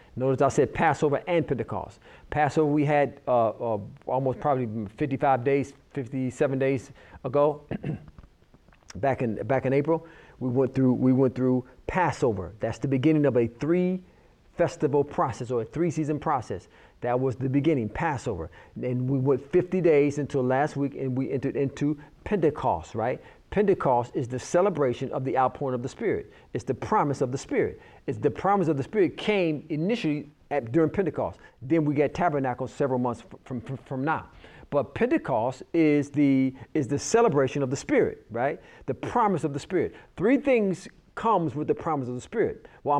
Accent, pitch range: American, 130-155 Hz